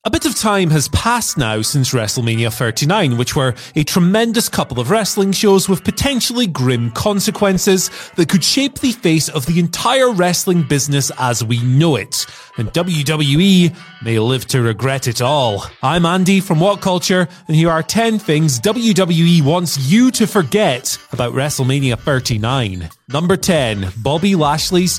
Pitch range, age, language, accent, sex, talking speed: 135-205 Hz, 30-49, English, British, male, 160 wpm